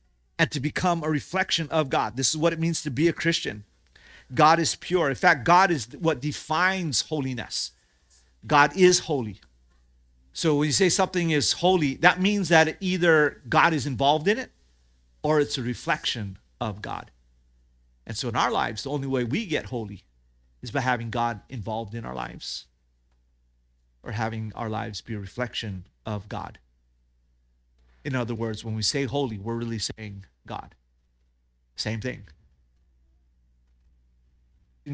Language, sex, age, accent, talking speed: English, male, 40-59, American, 160 wpm